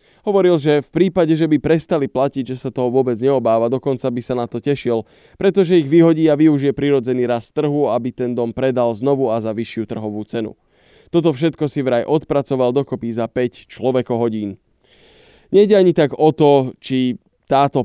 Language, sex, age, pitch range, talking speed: Slovak, male, 20-39, 115-145 Hz, 180 wpm